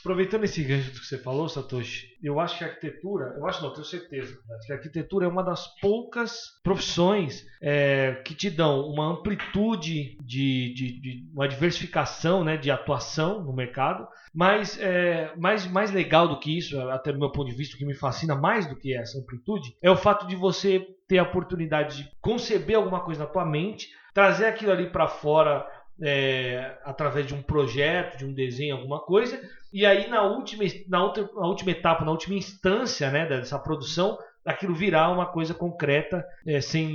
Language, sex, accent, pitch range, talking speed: Portuguese, male, Brazilian, 140-190 Hz, 185 wpm